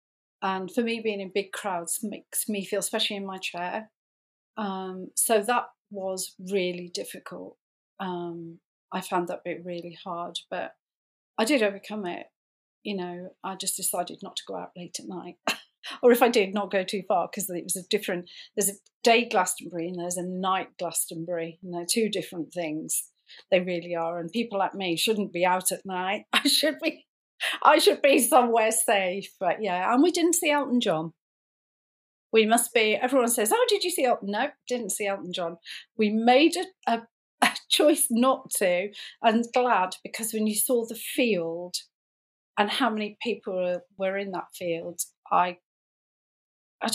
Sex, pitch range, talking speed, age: female, 180-230 Hz, 180 wpm, 40-59